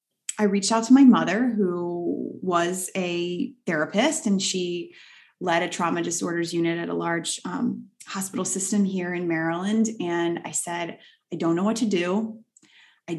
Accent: American